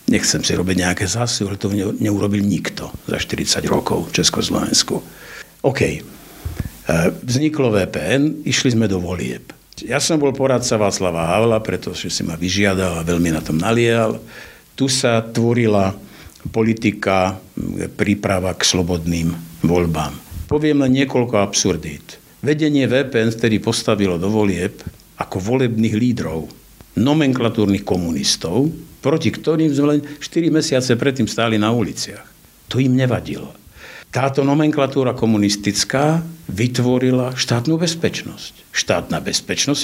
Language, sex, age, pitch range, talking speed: Slovak, male, 60-79, 100-140 Hz, 120 wpm